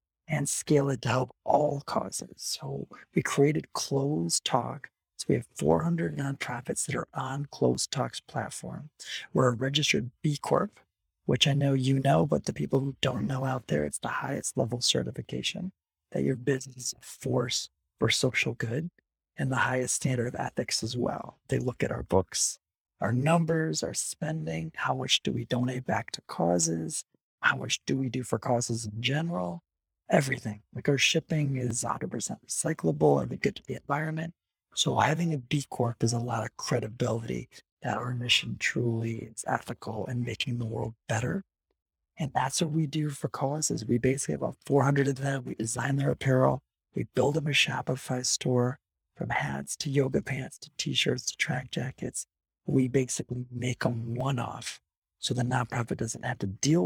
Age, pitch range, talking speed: 40-59, 115-140 Hz, 175 wpm